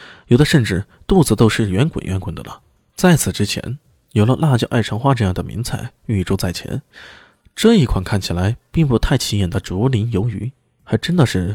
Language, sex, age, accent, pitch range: Chinese, male, 20-39, native, 100-155 Hz